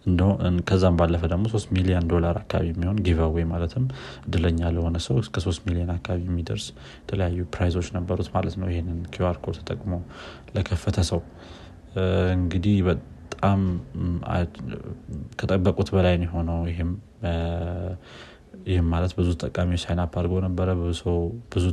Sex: male